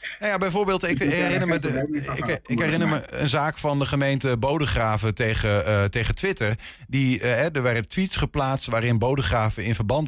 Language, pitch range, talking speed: Dutch, 110-145 Hz, 175 wpm